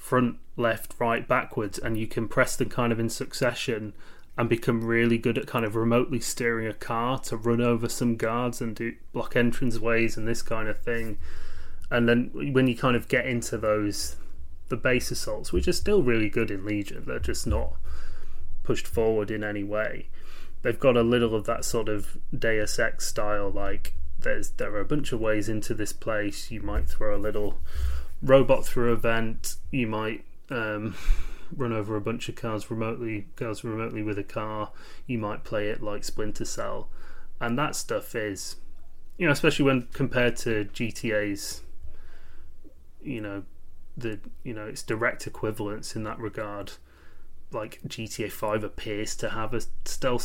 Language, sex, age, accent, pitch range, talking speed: English, male, 20-39, British, 100-120 Hz, 175 wpm